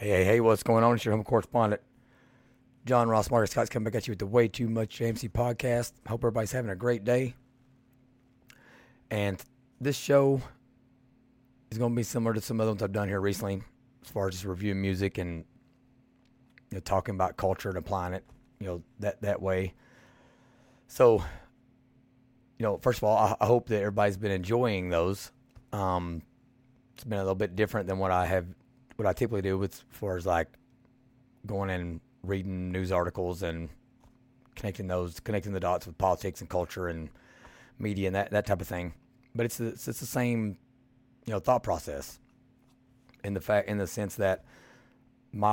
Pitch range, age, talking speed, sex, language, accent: 95-125 Hz, 30-49, 185 wpm, male, English, American